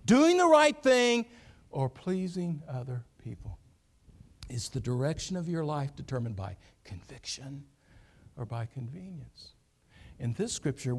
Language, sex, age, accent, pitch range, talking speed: English, male, 60-79, American, 105-165 Hz, 125 wpm